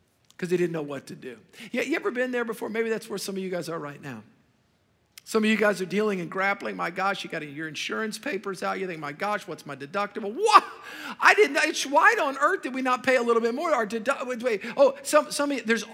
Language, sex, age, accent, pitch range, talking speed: English, male, 50-69, American, 185-235 Hz, 265 wpm